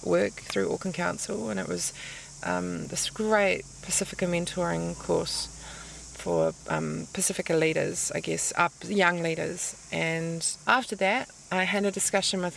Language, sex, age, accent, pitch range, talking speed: English, female, 20-39, Australian, 155-195 Hz, 145 wpm